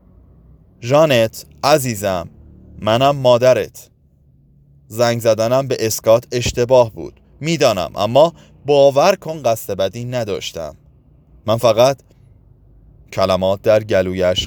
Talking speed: 90 wpm